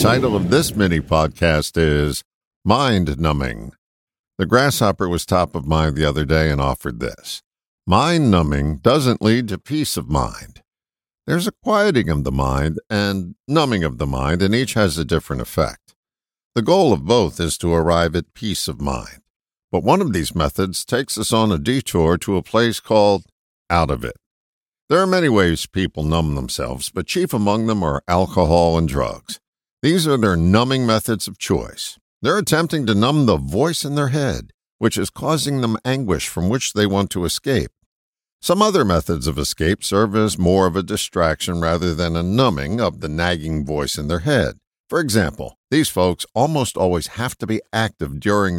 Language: English